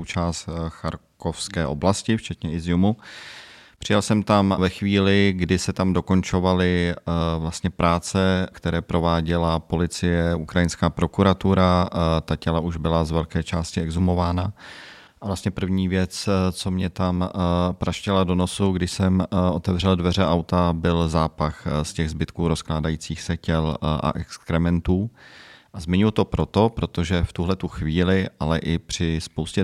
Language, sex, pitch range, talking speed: Czech, male, 80-95 Hz, 135 wpm